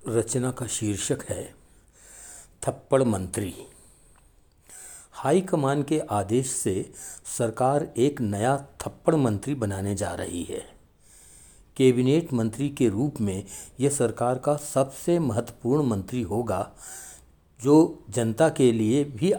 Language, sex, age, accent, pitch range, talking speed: Hindi, male, 60-79, native, 105-140 Hz, 110 wpm